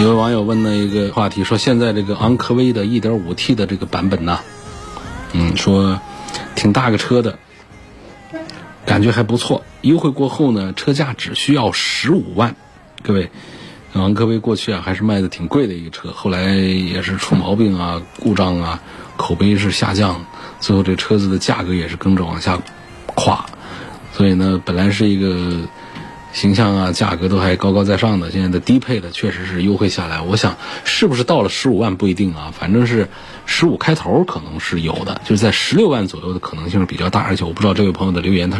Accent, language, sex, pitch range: native, Chinese, male, 95-115 Hz